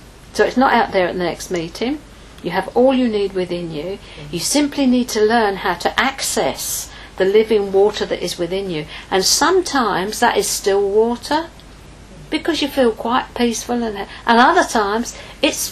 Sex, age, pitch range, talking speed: female, 50-69, 190-250 Hz, 175 wpm